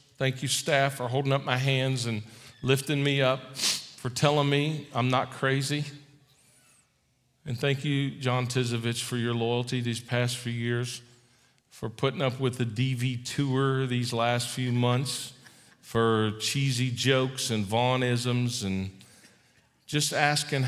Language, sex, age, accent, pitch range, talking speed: English, male, 40-59, American, 115-135 Hz, 140 wpm